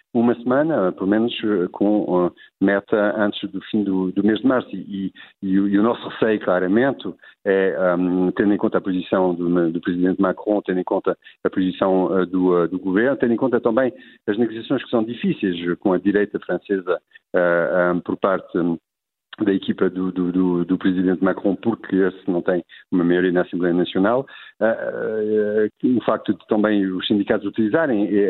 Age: 50-69